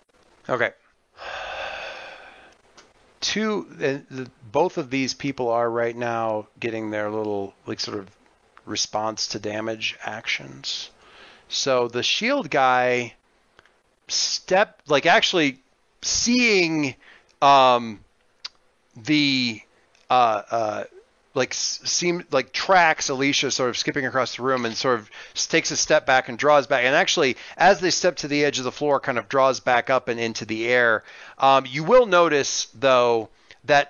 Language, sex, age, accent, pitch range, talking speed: English, male, 40-59, American, 120-155 Hz, 140 wpm